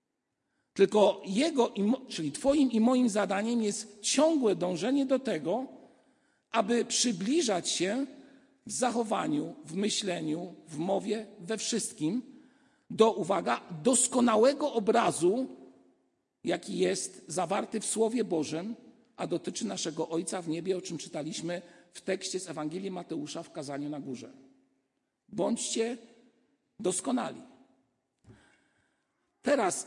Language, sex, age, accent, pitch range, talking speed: Polish, male, 50-69, native, 190-255 Hz, 110 wpm